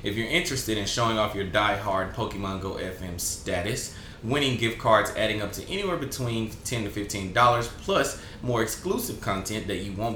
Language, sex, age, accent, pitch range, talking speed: English, male, 30-49, American, 95-120 Hz, 175 wpm